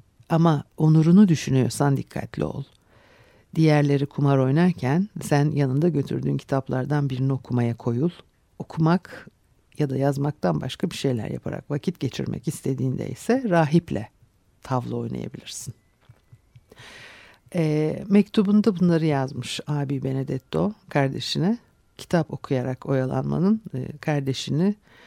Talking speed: 100 wpm